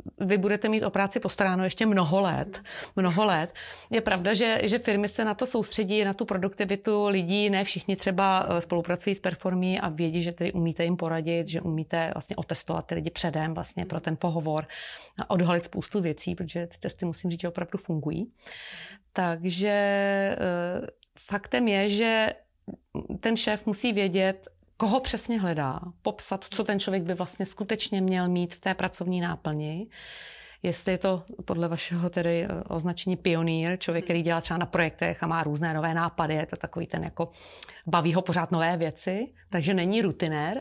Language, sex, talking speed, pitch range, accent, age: Czech, female, 170 wpm, 170-205 Hz, native, 30-49